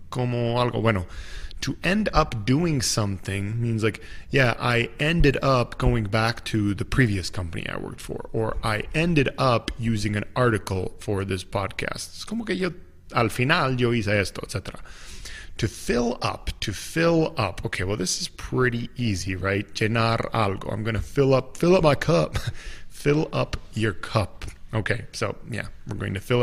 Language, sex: English, male